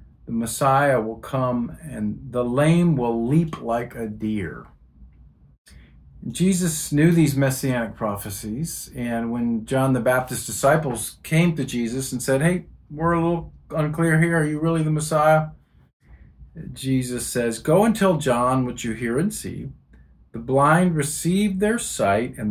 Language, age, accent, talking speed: English, 50-69, American, 150 wpm